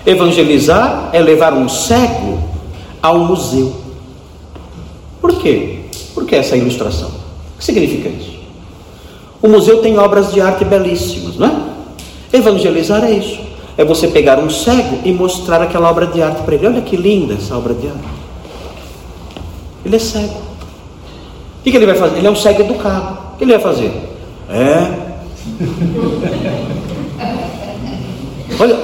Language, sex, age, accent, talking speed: Portuguese, male, 50-69, Brazilian, 145 wpm